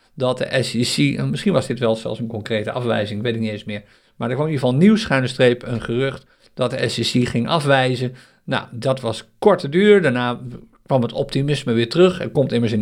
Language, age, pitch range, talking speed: Dutch, 50-69, 120-155 Hz, 225 wpm